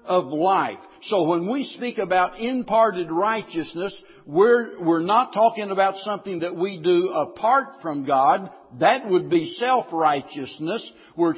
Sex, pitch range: male, 175-230 Hz